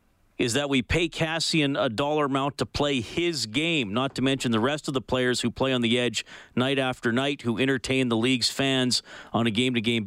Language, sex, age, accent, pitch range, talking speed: English, male, 40-59, American, 105-135 Hz, 215 wpm